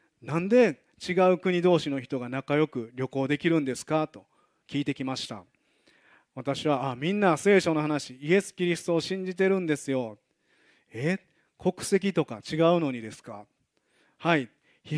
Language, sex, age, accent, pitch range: Japanese, male, 40-59, native, 130-165 Hz